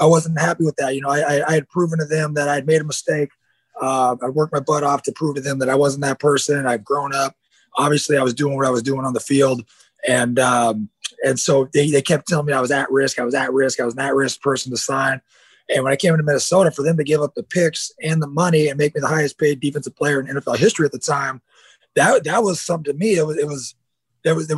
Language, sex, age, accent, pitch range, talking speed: English, male, 20-39, American, 130-155 Hz, 285 wpm